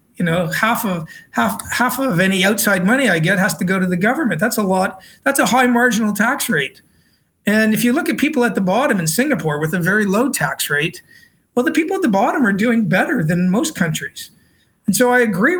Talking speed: 230 wpm